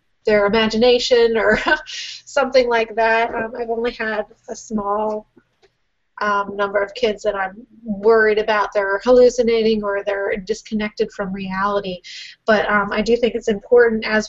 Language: English